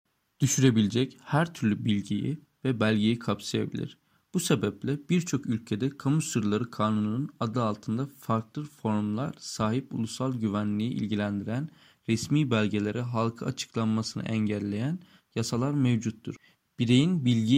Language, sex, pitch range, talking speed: Turkish, male, 110-140 Hz, 105 wpm